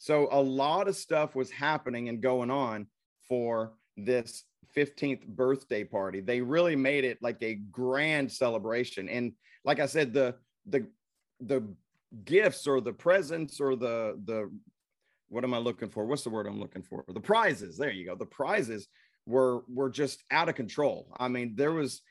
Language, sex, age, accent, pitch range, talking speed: English, male, 30-49, American, 120-140 Hz, 175 wpm